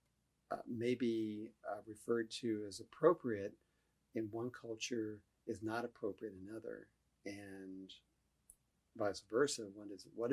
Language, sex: English, male